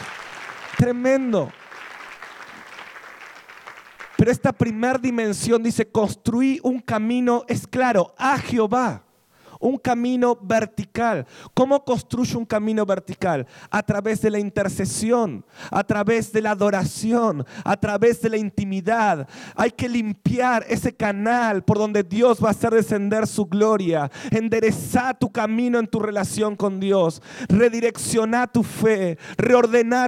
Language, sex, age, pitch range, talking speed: Spanish, male, 30-49, 185-230 Hz, 125 wpm